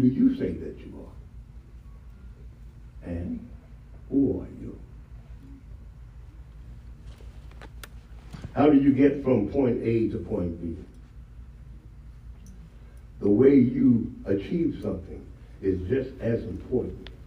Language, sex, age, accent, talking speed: English, male, 60-79, American, 100 wpm